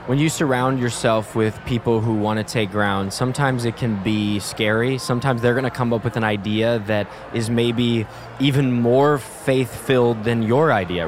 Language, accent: English, American